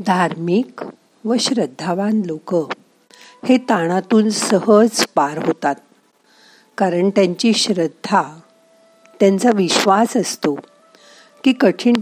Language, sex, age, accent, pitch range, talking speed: Marathi, female, 50-69, native, 175-235 Hz, 85 wpm